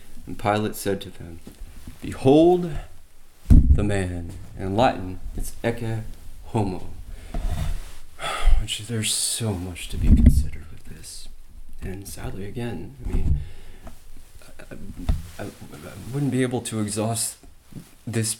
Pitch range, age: 90-115 Hz, 30-49